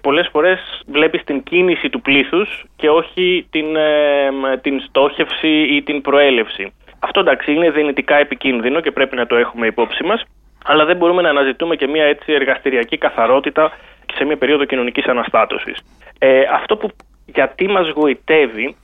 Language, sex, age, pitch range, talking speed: Greek, male, 20-39, 130-180 Hz, 155 wpm